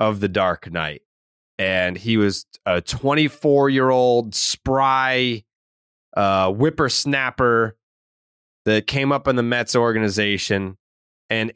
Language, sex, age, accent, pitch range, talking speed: English, male, 20-39, American, 105-135 Hz, 105 wpm